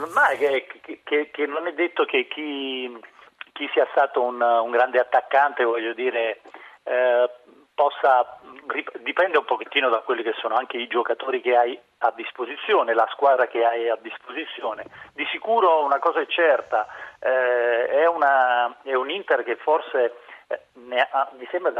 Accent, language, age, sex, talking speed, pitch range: native, Italian, 40-59, male, 160 wpm, 115-150 Hz